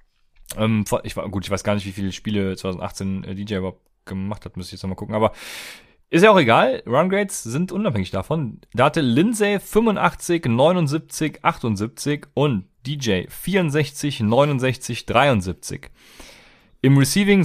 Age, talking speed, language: 30-49, 145 wpm, German